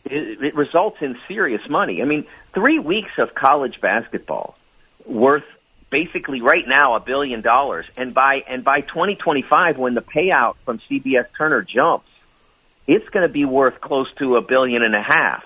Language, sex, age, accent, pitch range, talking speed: English, male, 50-69, American, 120-165 Hz, 170 wpm